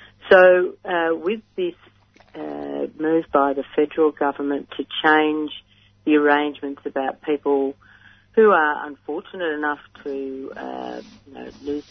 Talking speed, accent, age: 125 wpm, Australian, 50-69